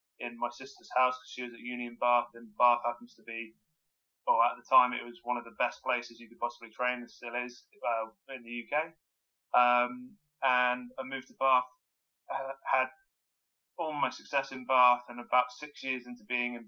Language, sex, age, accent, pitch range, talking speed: English, male, 20-39, British, 115-130 Hz, 200 wpm